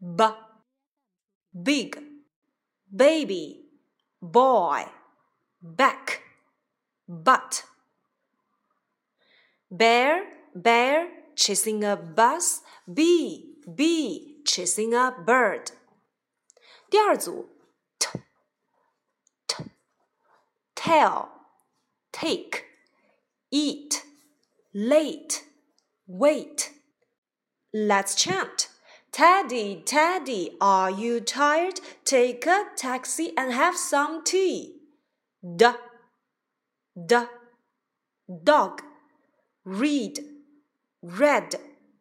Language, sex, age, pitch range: Chinese, female, 30-49, 235-310 Hz